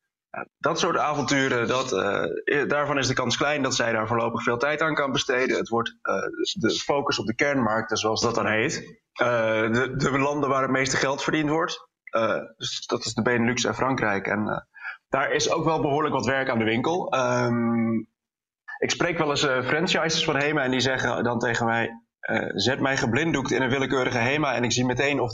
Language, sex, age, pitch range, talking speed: Dutch, male, 20-39, 115-145 Hz, 210 wpm